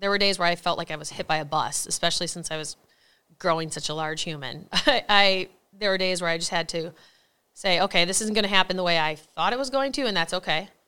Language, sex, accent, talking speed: English, female, American, 270 wpm